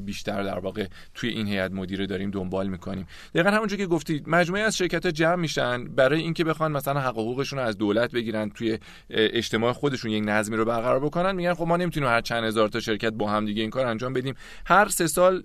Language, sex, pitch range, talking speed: Persian, male, 105-150 Hz, 215 wpm